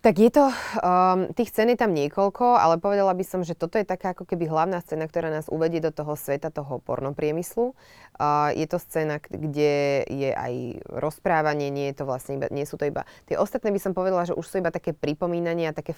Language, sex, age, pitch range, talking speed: Slovak, female, 20-39, 145-175 Hz, 220 wpm